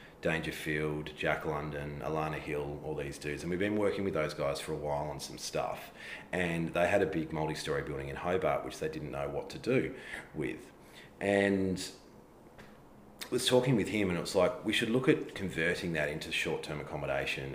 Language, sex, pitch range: English, male, 75-90 Hz